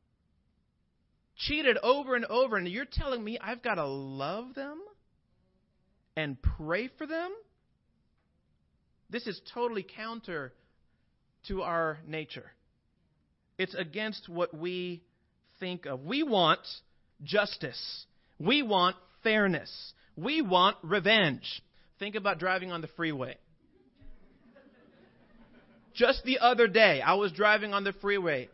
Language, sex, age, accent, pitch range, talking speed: English, male, 40-59, American, 185-290 Hz, 115 wpm